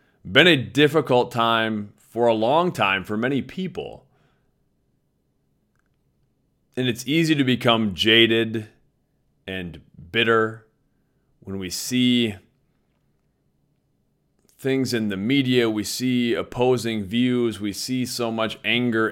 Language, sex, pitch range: English, male, 105-130 Hz